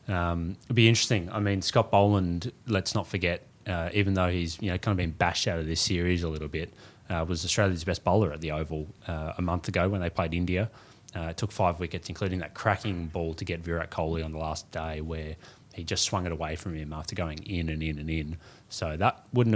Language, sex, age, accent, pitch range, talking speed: English, male, 20-39, Australian, 80-100 Hz, 245 wpm